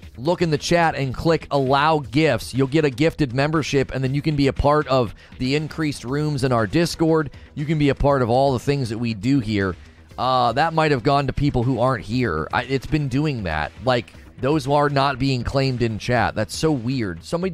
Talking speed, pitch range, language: 230 wpm, 110-150 Hz, English